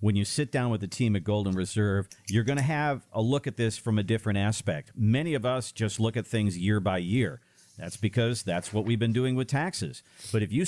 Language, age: English, 50-69